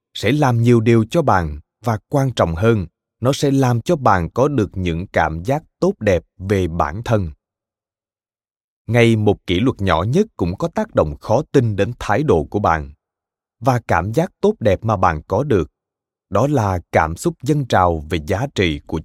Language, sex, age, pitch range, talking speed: Vietnamese, male, 20-39, 95-125 Hz, 190 wpm